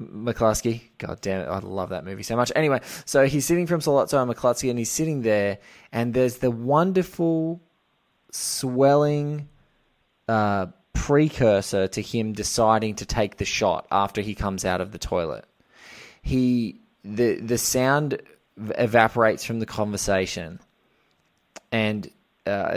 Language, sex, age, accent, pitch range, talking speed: English, male, 20-39, Australian, 100-120 Hz, 140 wpm